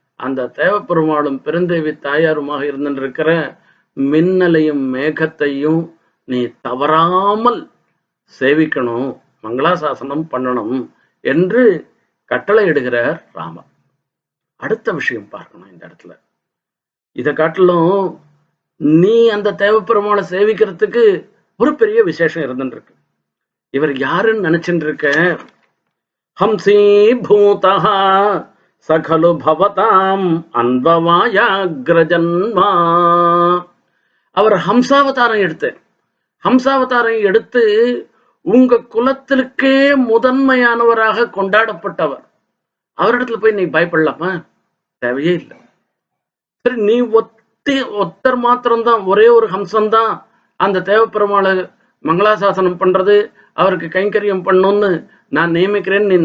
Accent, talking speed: native, 75 wpm